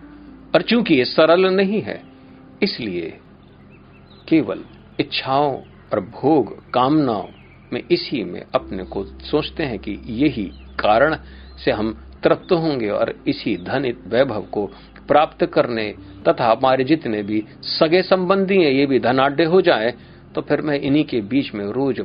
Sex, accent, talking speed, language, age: male, native, 140 wpm, Hindi, 50-69